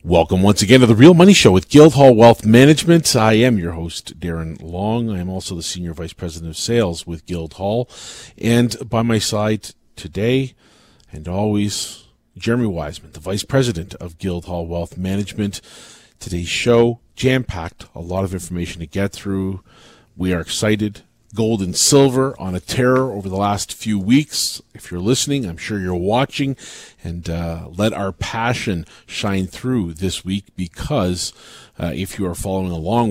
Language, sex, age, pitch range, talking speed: English, male, 40-59, 90-115 Hz, 165 wpm